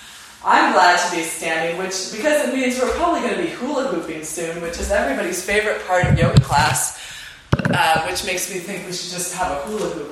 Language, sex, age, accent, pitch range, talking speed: English, female, 20-39, American, 165-225 Hz, 200 wpm